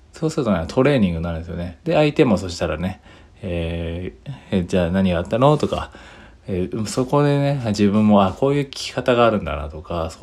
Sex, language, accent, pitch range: male, Japanese, native, 90-115 Hz